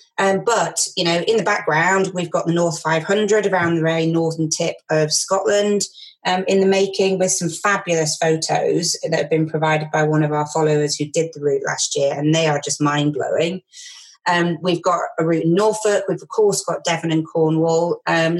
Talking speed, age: 205 wpm, 30-49